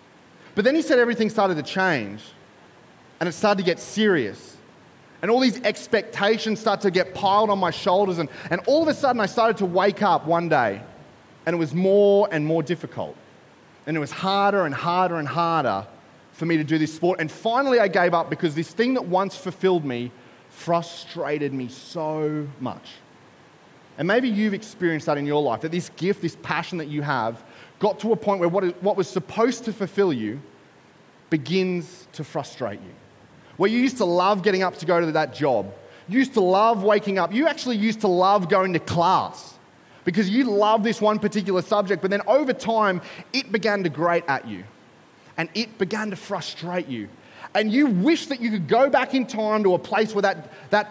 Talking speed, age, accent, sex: 205 wpm, 30-49, Australian, male